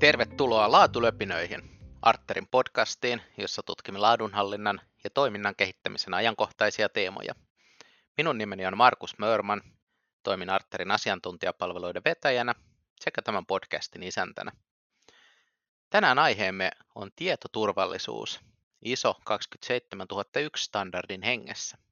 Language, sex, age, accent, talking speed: Finnish, male, 30-49, native, 90 wpm